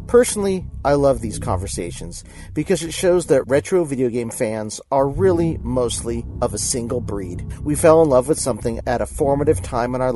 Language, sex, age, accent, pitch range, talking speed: English, male, 40-59, American, 115-155 Hz, 190 wpm